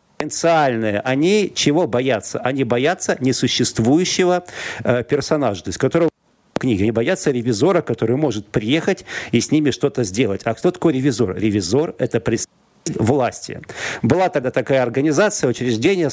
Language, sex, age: Russian, male, 40-59